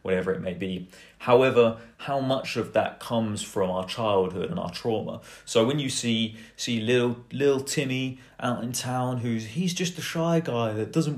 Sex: male